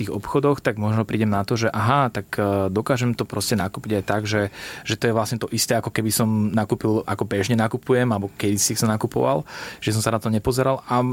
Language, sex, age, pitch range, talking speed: Slovak, male, 20-39, 105-115 Hz, 225 wpm